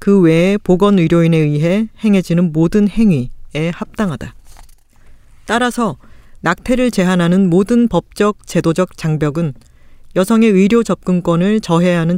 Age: 40-59